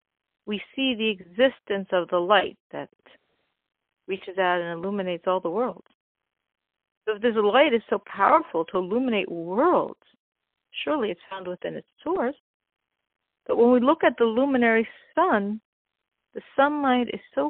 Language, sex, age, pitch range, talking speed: English, female, 50-69, 190-260 Hz, 145 wpm